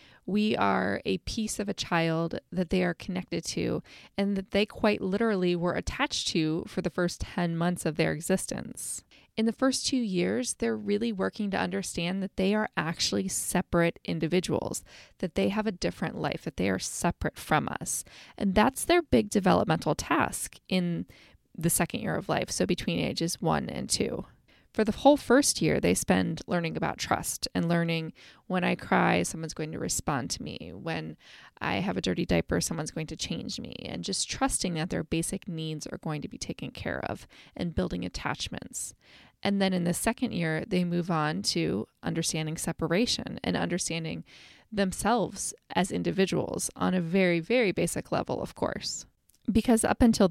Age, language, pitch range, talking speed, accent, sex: 20-39, English, 165-215 Hz, 180 wpm, American, female